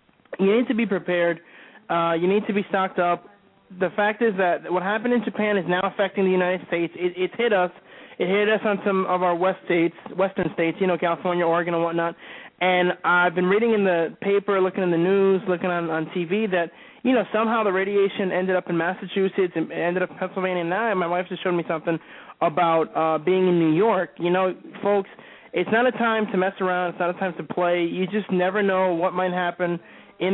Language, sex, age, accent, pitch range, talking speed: English, male, 20-39, American, 175-195 Hz, 230 wpm